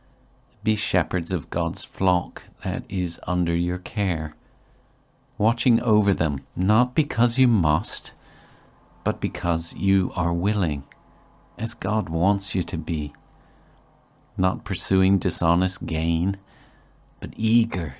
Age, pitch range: 50-69, 85-110 Hz